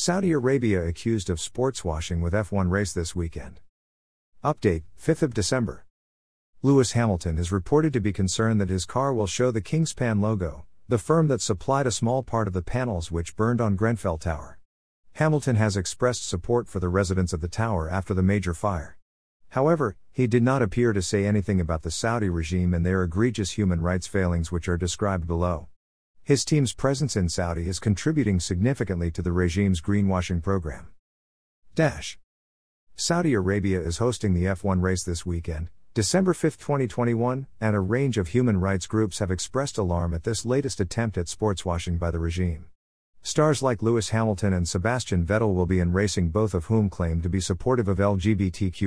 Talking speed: 180 wpm